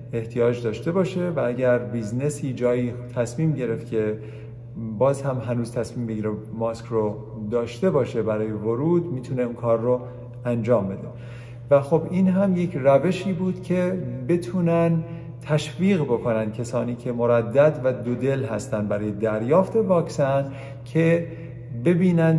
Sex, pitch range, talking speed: male, 115-145 Hz, 130 wpm